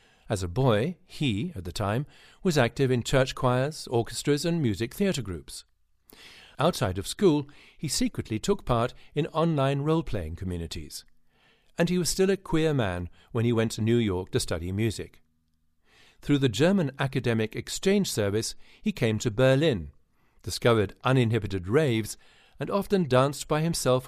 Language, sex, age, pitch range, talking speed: English, male, 50-69, 95-145 Hz, 155 wpm